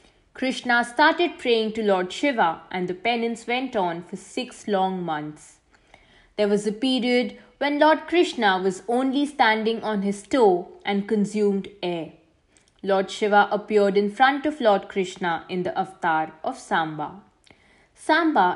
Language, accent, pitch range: English, Indian, 180-240 Hz